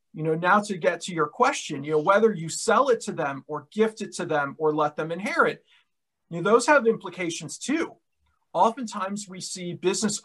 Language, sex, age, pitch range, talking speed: English, male, 40-59, 165-215 Hz, 205 wpm